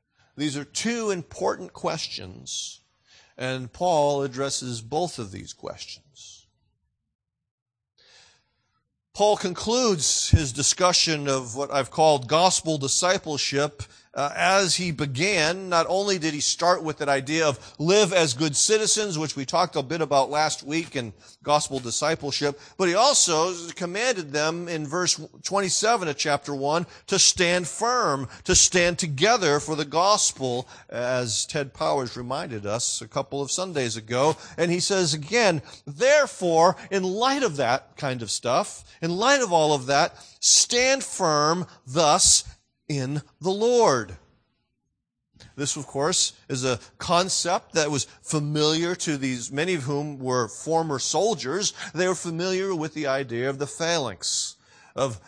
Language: English